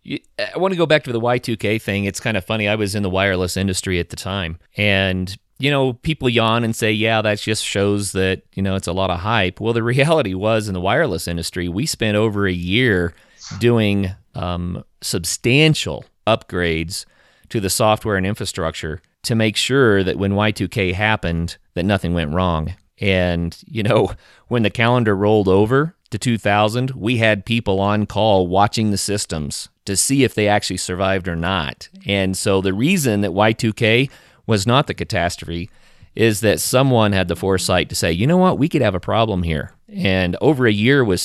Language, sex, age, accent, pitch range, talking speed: English, male, 30-49, American, 90-115 Hz, 190 wpm